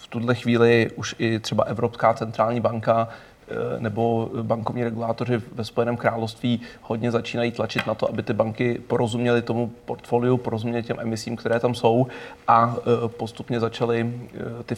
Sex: male